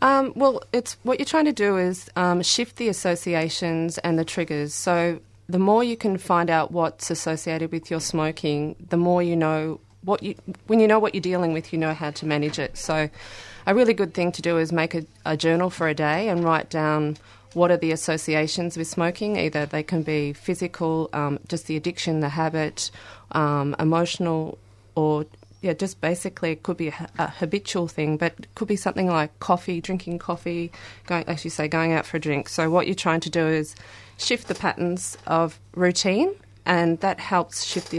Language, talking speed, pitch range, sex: English, 205 wpm, 155-180 Hz, female